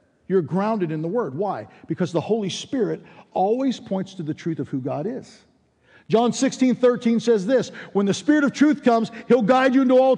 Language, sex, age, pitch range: English, male, 50-69, 190-265 Hz